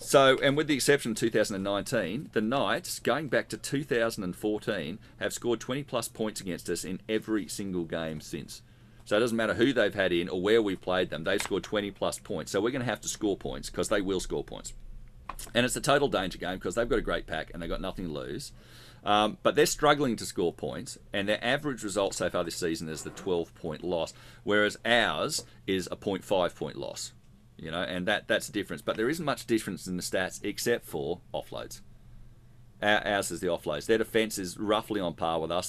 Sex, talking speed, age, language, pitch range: male, 215 wpm, 40-59, English, 90-115 Hz